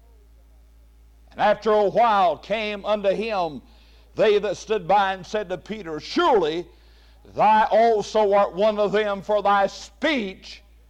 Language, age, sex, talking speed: English, 60-79, male, 130 wpm